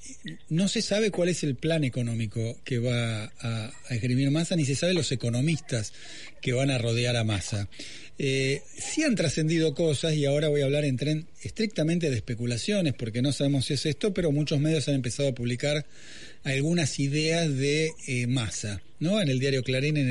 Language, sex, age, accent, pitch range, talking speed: Spanish, male, 40-59, Argentinian, 130-165 Hz, 190 wpm